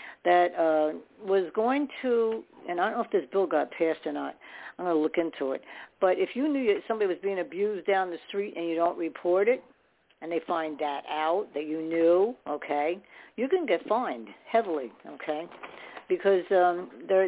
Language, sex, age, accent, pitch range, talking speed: English, female, 60-79, American, 165-205 Hz, 195 wpm